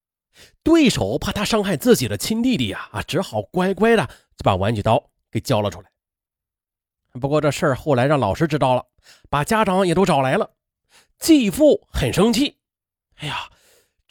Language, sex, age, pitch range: Chinese, male, 30-49, 115-195 Hz